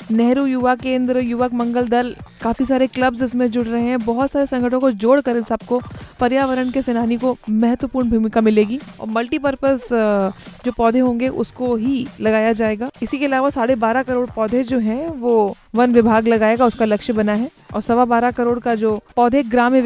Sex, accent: female, native